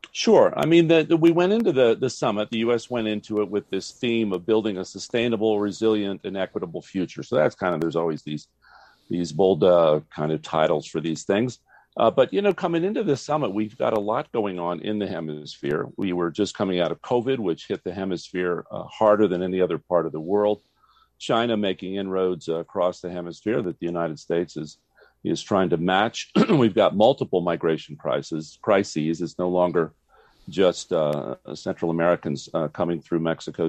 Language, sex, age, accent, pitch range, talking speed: English, male, 40-59, American, 80-105 Hz, 200 wpm